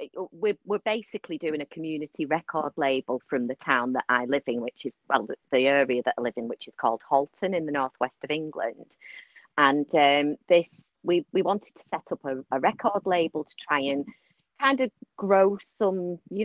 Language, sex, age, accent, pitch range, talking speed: English, female, 30-49, British, 145-190 Hz, 195 wpm